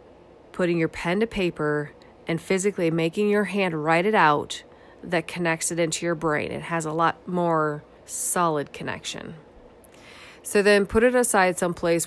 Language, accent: English, American